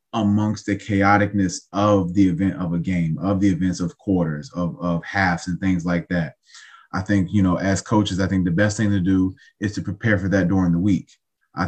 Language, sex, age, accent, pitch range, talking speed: English, male, 20-39, American, 90-110 Hz, 220 wpm